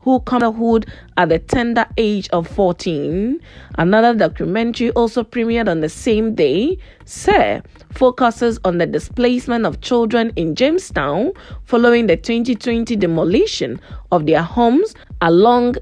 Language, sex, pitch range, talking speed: English, female, 185-240 Hz, 135 wpm